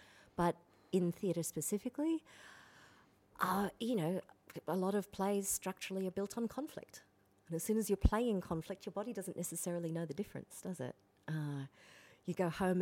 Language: English